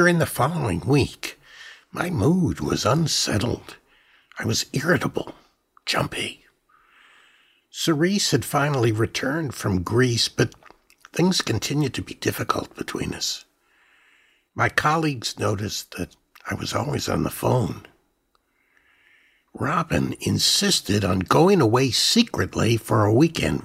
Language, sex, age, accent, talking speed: English, male, 60-79, American, 115 wpm